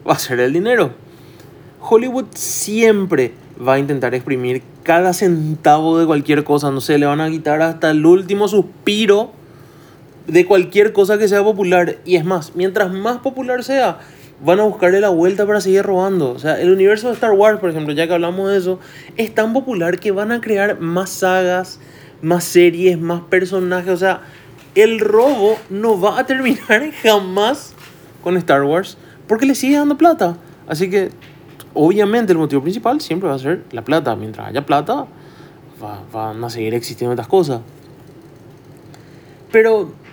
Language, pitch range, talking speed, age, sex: Spanish, 140-200 Hz, 170 wpm, 20-39, male